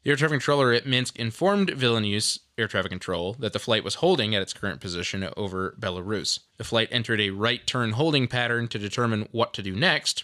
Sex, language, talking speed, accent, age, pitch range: male, English, 210 wpm, American, 20-39, 100-140 Hz